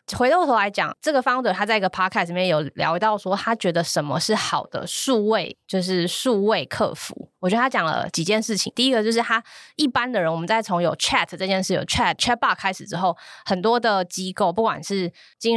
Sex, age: female, 20-39